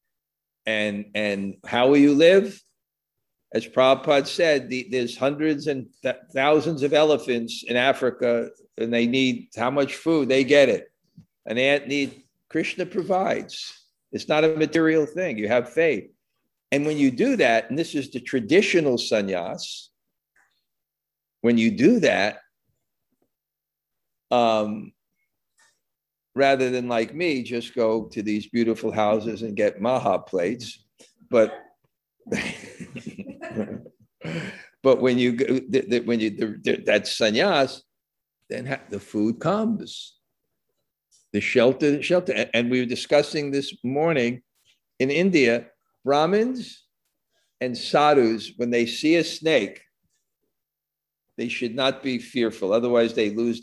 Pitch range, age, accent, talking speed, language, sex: 115-150 Hz, 50-69, American, 125 wpm, English, male